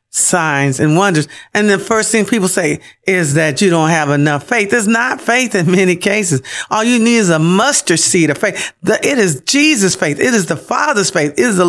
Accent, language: American, English